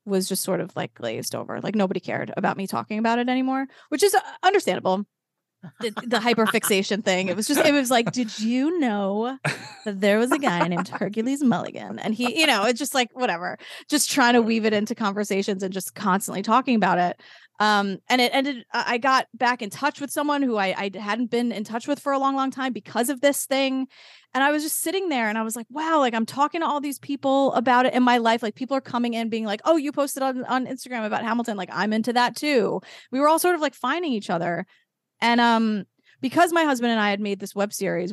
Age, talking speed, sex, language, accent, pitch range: 20-39, 240 wpm, female, English, American, 195-260 Hz